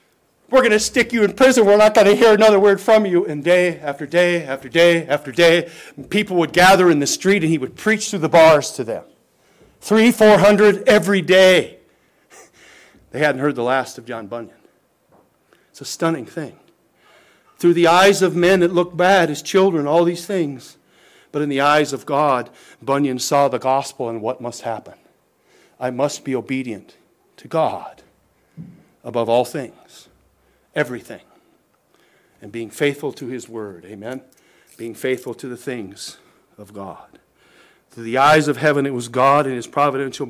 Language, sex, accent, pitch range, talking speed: English, male, American, 130-175 Hz, 175 wpm